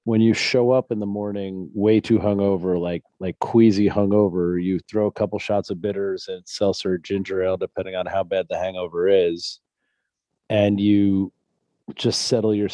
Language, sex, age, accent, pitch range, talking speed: English, male, 30-49, American, 95-115 Hz, 175 wpm